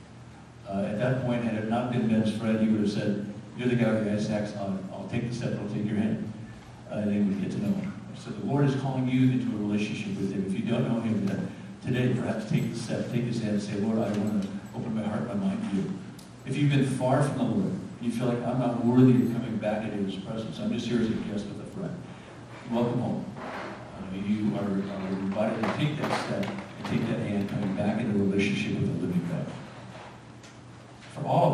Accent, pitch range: American, 105-125 Hz